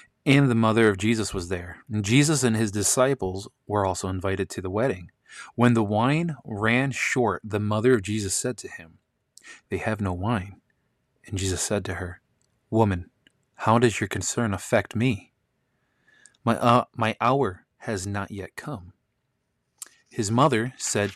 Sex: male